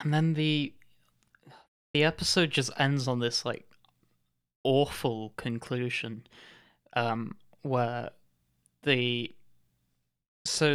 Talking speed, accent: 90 wpm, British